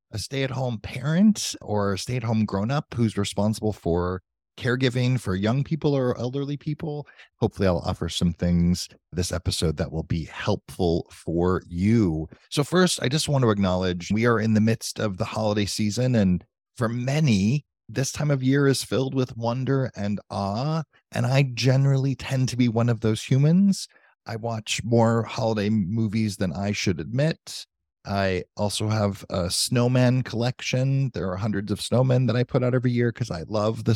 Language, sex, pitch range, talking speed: English, male, 95-130 Hz, 185 wpm